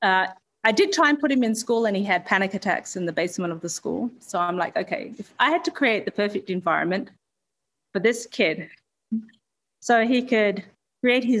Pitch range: 170-210 Hz